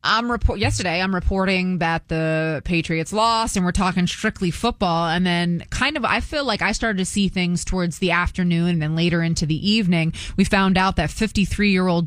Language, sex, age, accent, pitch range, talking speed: English, female, 20-39, American, 170-215 Hz, 200 wpm